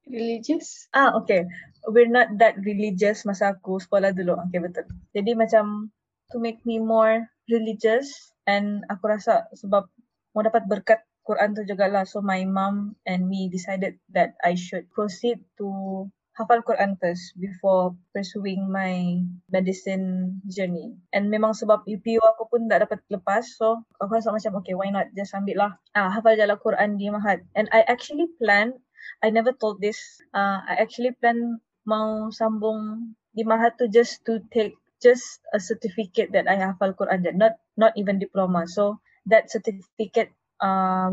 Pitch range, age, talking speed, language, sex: 195-225 Hz, 20-39, 160 wpm, English, female